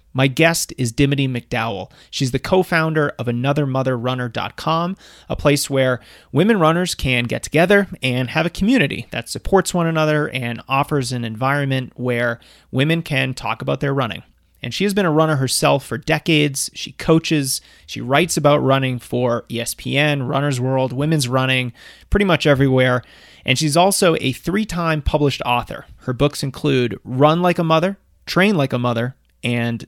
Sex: male